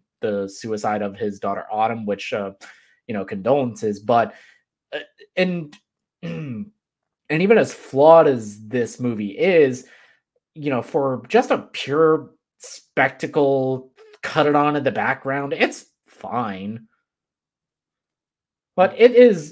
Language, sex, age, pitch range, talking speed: English, male, 20-39, 110-145 Hz, 120 wpm